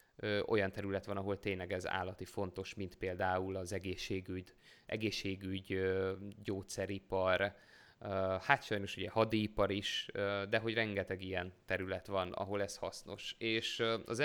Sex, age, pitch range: male, 20-39, 95-110 Hz